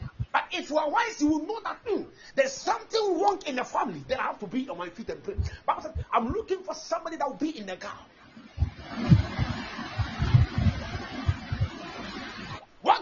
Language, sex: Japanese, male